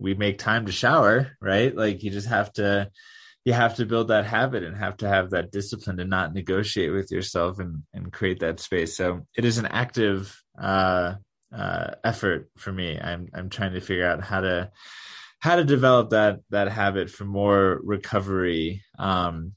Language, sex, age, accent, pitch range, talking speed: English, male, 20-39, American, 95-110 Hz, 185 wpm